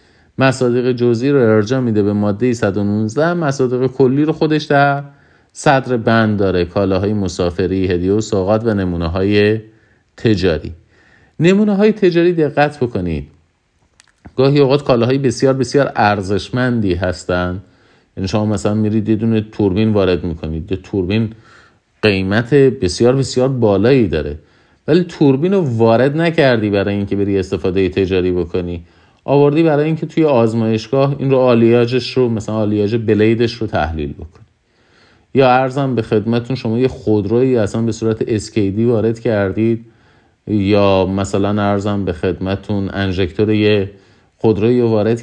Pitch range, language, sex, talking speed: 100-125 Hz, Persian, male, 130 wpm